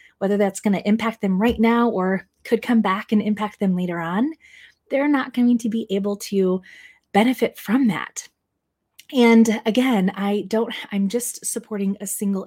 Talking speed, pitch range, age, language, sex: 175 wpm, 190-240 Hz, 20-39, English, female